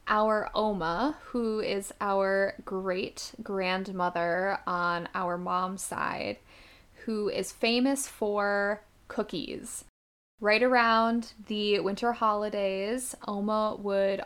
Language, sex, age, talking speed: English, female, 10-29, 95 wpm